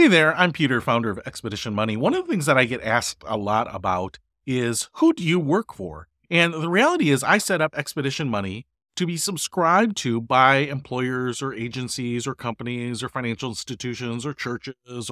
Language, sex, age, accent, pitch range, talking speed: English, male, 40-59, American, 120-170 Hz, 195 wpm